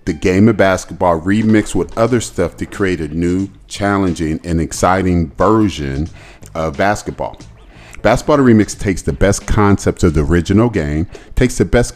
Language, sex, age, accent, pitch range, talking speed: English, male, 40-59, American, 85-105 Hz, 155 wpm